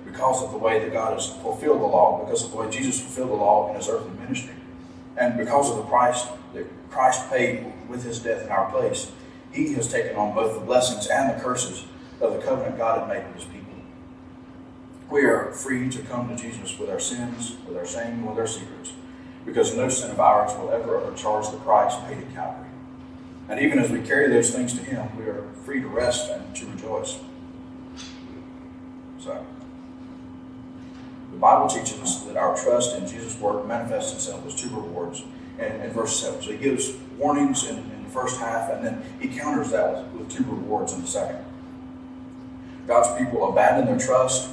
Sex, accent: male, American